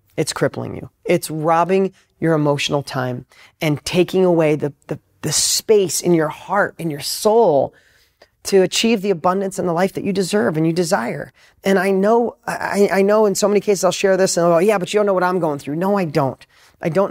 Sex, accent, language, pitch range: male, American, English, 150-195 Hz